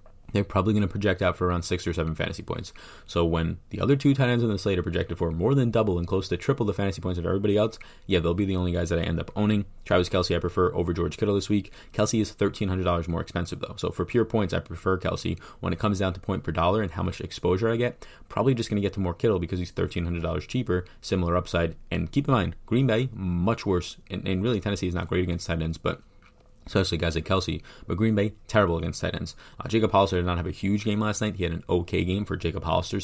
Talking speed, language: 270 wpm, English